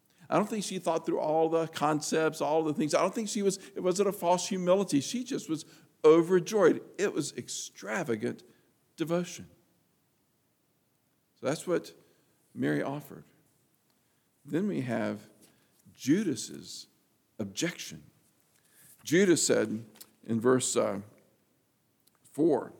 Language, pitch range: English, 155-220 Hz